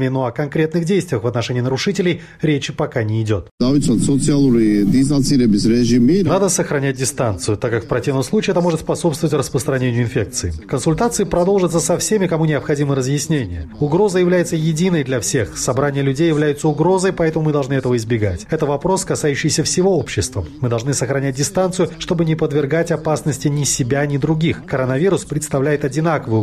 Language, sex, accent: Russian, male, native